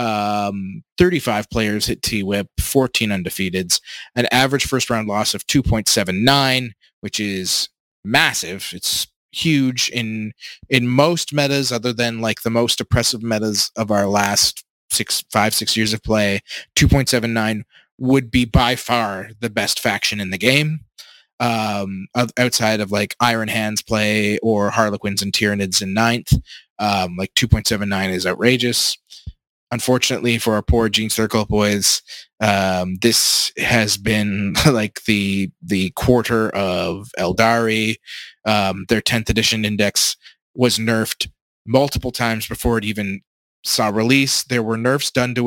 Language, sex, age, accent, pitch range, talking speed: English, male, 20-39, American, 105-120 Hz, 135 wpm